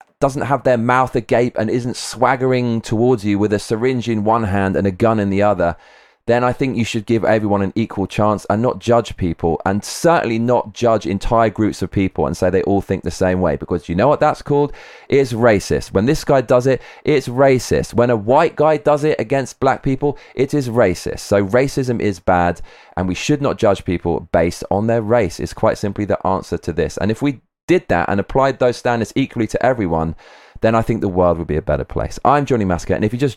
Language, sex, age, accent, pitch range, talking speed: English, male, 20-39, British, 100-130 Hz, 230 wpm